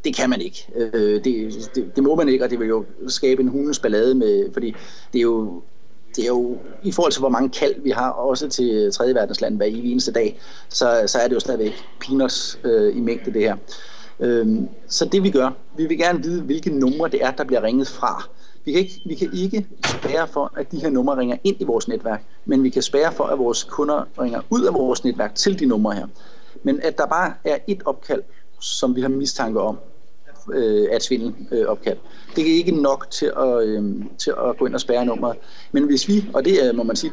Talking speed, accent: 225 wpm, native